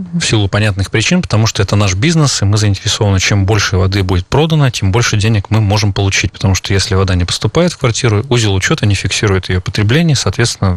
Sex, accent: male, native